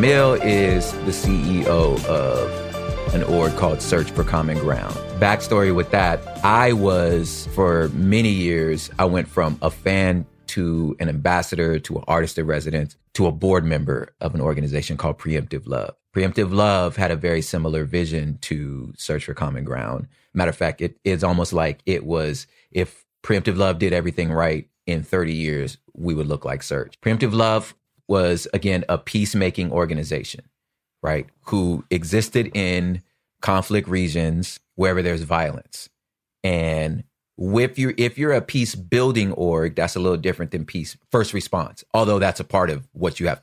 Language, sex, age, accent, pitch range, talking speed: English, male, 30-49, American, 80-100 Hz, 165 wpm